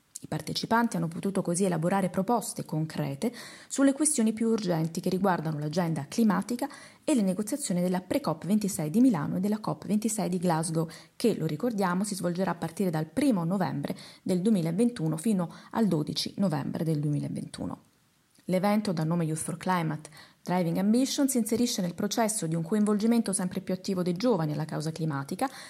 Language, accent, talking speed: Italian, native, 165 wpm